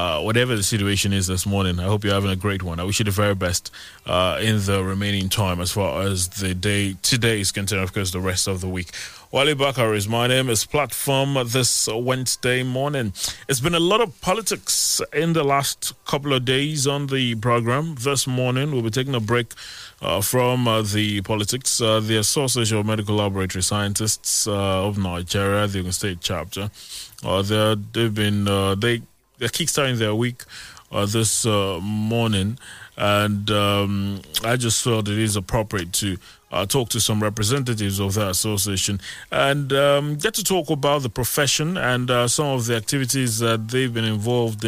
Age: 20-39